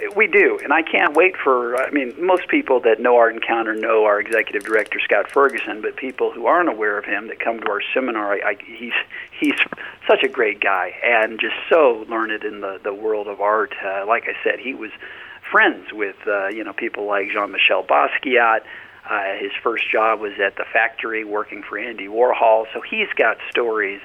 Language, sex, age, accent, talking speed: English, male, 50-69, American, 205 wpm